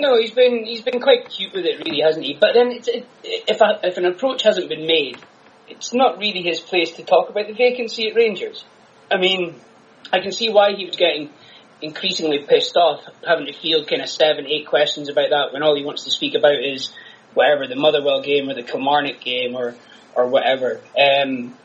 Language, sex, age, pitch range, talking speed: English, male, 20-39, 150-230 Hz, 215 wpm